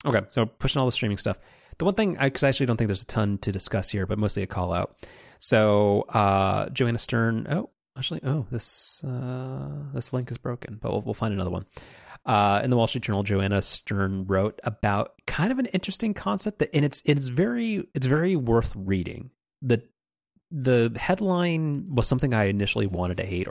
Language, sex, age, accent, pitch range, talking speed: English, male, 30-49, American, 100-135 Hz, 200 wpm